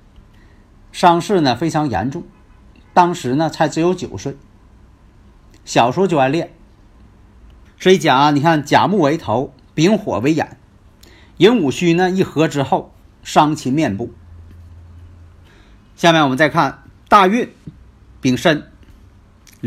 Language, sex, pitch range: Chinese, male, 100-150 Hz